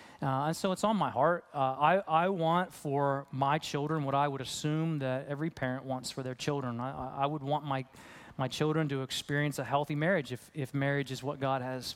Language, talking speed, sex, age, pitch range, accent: English, 220 wpm, male, 30-49, 140-170 Hz, American